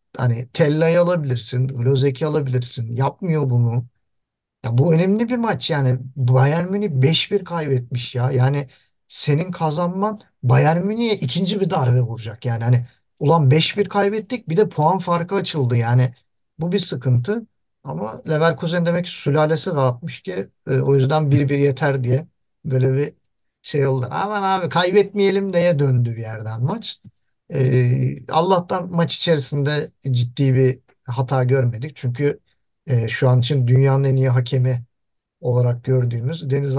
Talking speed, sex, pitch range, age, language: 135 wpm, male, 130-170 Hz, 50-69, Turkish